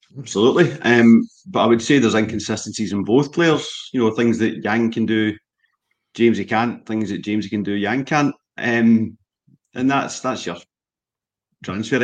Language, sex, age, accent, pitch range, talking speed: English, male, 40-59, British, 110-150 Hz, 165 wpm